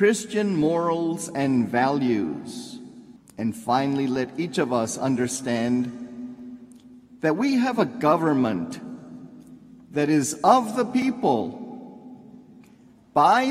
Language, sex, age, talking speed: English, male, 50-69, 100 wpm